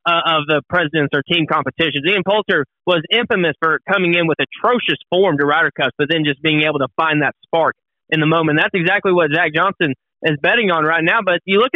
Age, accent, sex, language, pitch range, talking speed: 20-39, American, male, English, 170-230 Hz, 235 wpm